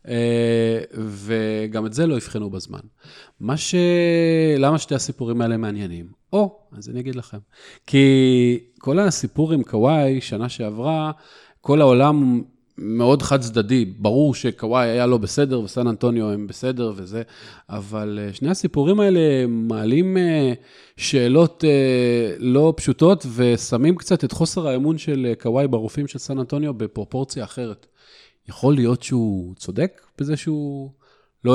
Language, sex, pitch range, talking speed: Hebrew, male, 115-150 Hz, 125 wpm